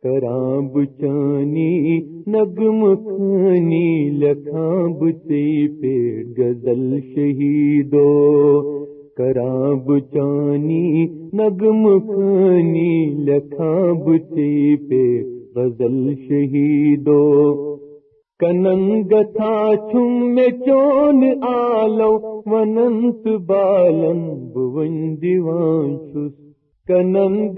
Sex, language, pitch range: male, Urdu, 145-195 Hz